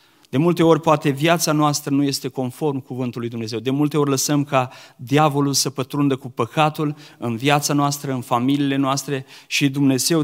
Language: Romanian